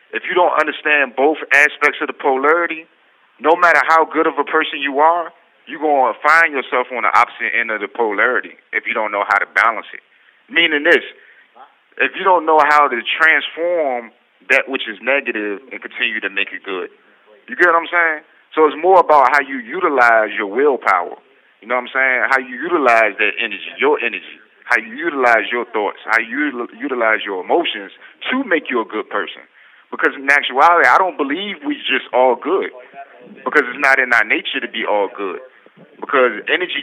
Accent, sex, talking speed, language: American, male, 195 wpm, English